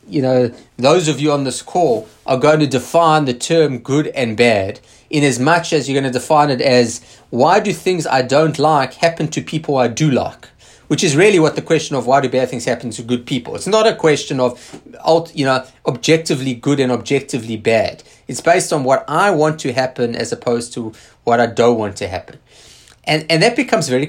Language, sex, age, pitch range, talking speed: English, male, 30-49, 130-170 Hz, 220 wpm